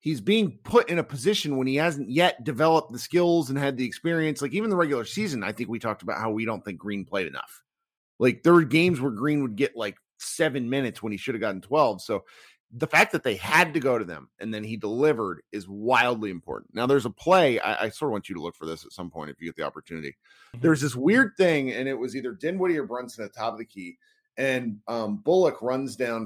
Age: 30-49